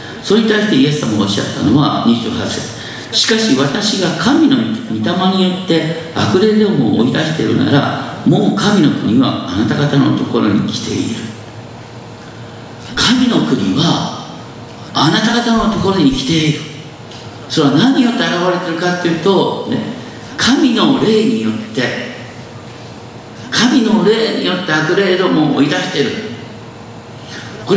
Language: Japanese